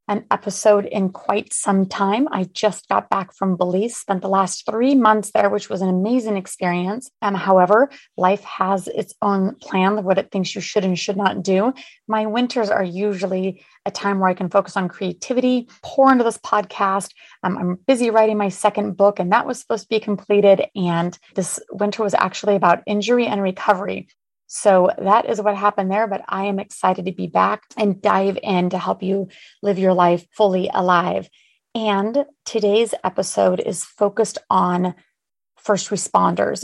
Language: English